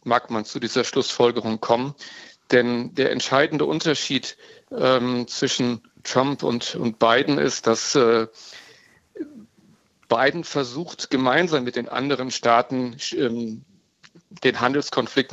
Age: 50-69